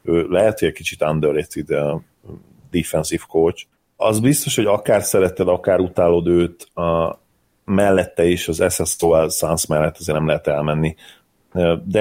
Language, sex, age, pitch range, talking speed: Hungarian, male, 30-49, 85-90 Hz, 140 wpm